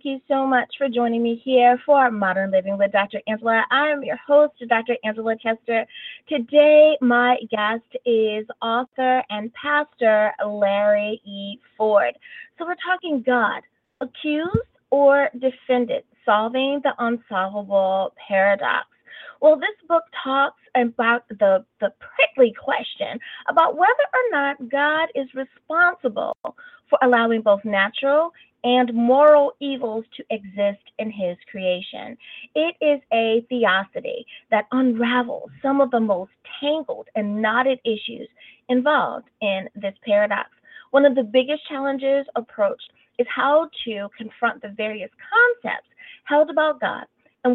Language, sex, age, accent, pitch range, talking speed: English, female, 30-49, American, 220-295 Hz, 135 wpm